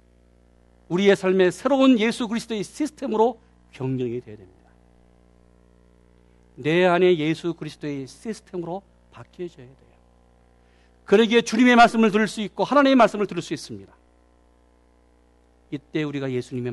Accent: native